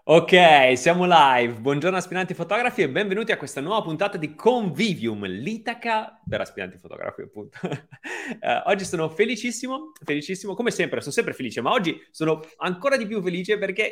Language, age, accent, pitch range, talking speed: Italian, 30-49, native, 135-190 Hz, 160 wpm